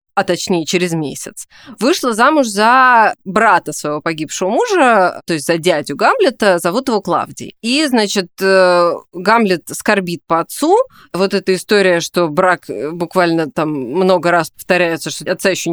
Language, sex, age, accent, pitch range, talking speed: Russian, female, 20-39, native, 170-210 Hz, 145 wpm